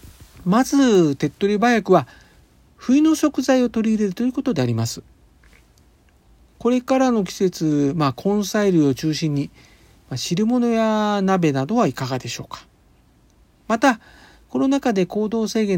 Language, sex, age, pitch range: Japanese, male, 50-69, 140-220 Hz